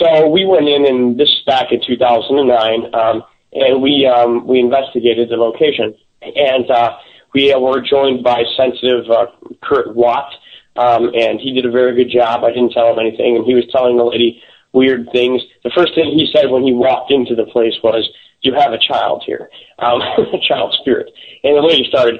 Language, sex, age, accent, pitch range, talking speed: English, male, 30-49, American, 120-145 Hz, 205 wpm